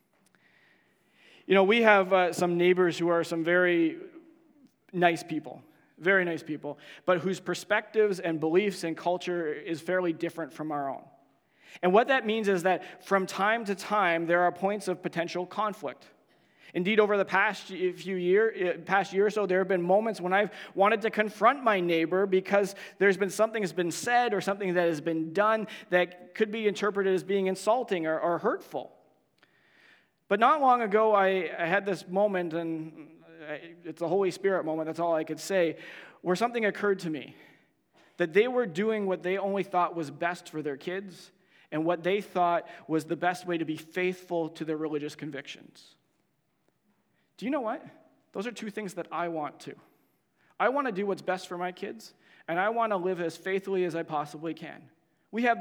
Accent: American